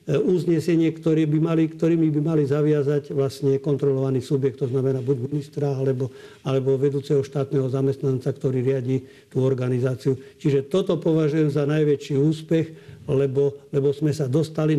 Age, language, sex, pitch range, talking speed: 50-69, Slovak, male, 140-155 Hz, 140 wpm